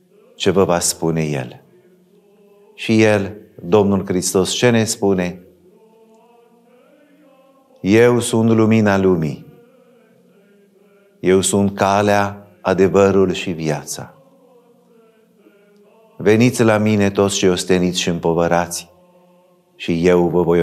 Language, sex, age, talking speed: Romanian, male, 50-69, 100 wpm